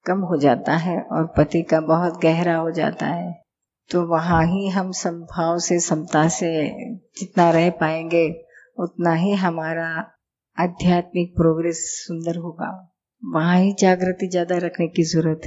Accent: native